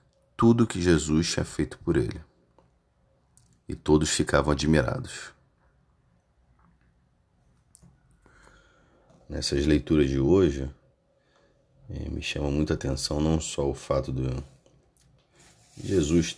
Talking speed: 90 wpm